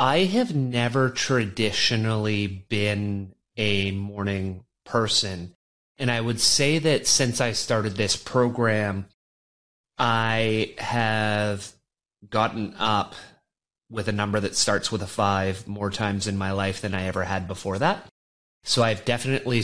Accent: American